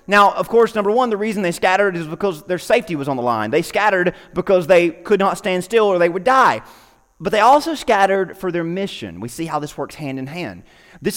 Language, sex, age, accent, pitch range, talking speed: English, male, 30-49, American, 155-200 Hz, 240 wpm